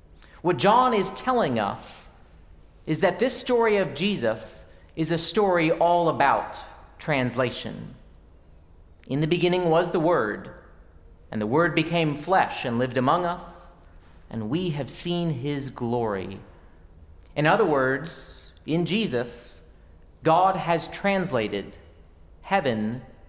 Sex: male